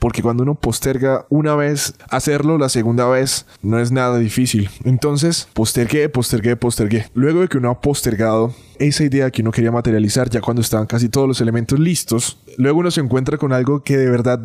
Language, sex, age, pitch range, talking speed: Spanish, male, 20-39, 115-140 Hz, 195 wpm